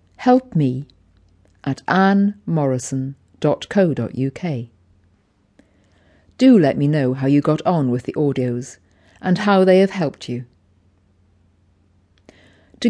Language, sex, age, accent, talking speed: English, female, 50-69, British, 100 wpm